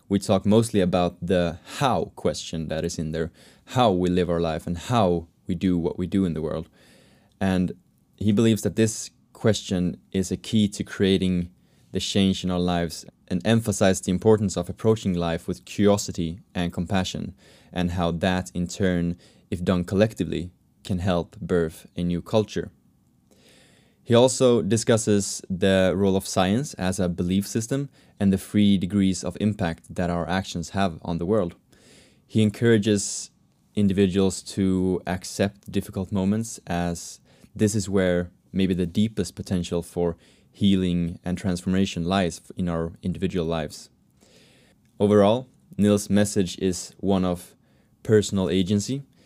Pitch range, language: 90-100 Hz, English